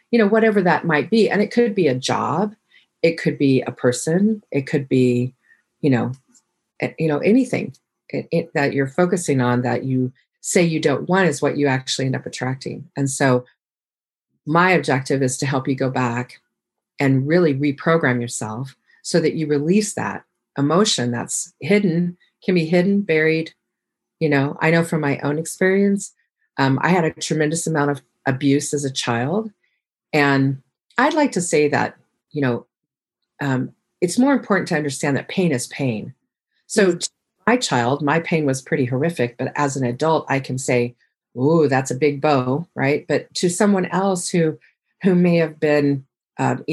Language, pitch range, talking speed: English, 135-185 Hz, 180 wpm